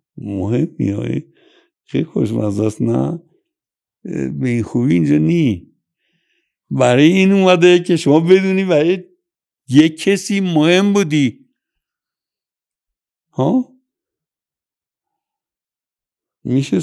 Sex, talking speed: male, 80 wpm